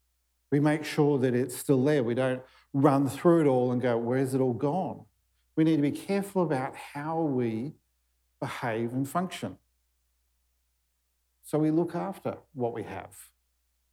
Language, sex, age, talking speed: English, male, 50-69, 160 wpm